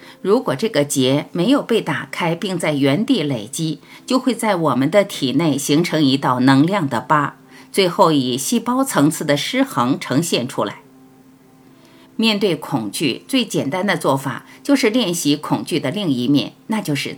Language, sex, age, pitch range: Chinese, female, 50-69, 140-210 Hz